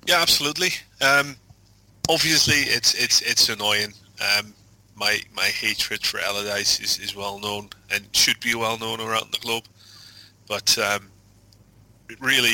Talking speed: 140 wpm